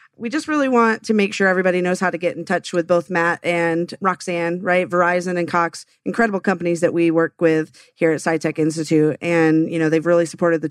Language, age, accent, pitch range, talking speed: English, 30-49, American, 160-185 Hz, 225 wpm